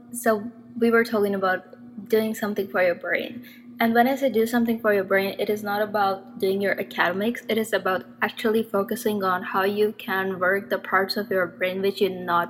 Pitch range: 195-240 Hz